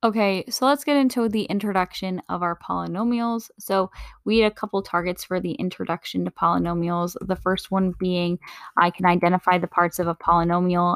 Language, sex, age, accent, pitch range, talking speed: English, female, 10-29, American, 175-225 Hz, 180 wpm